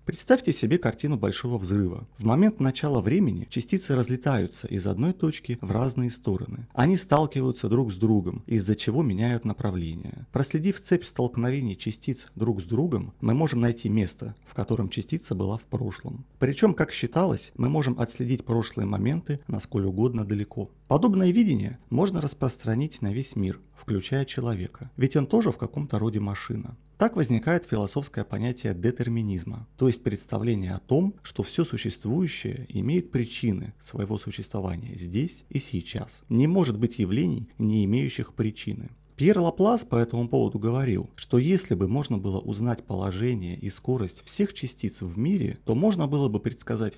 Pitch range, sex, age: 110-145 Hz, male, 30-49